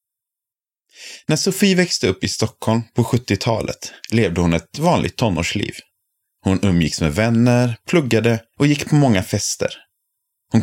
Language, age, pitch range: Swedish, 30-49, 100-140 Hz